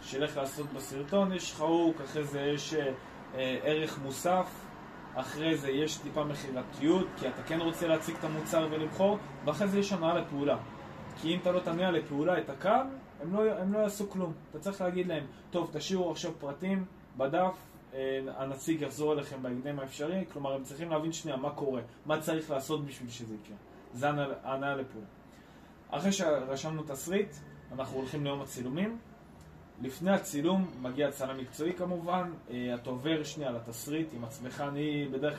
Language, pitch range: Hebrew, 135-165 Hz